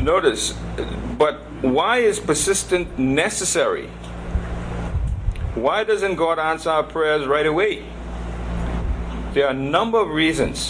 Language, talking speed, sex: English, 110 wpm, male